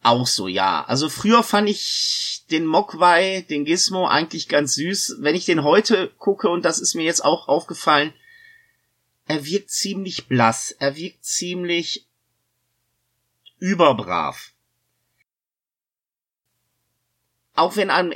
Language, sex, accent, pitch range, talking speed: German, male, German, 155-205 Hz, 120 wpm